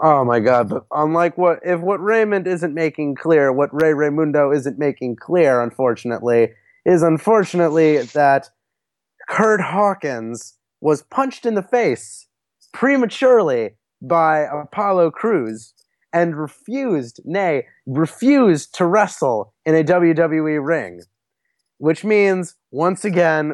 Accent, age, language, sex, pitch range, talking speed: American, 20-39, English, male, 145-200 Hz, 120 wpm